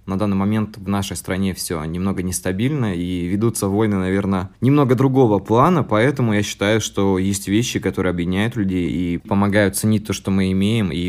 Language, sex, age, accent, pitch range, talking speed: Russian, male, 20-39, native, 90-105 Hz, 180 wpm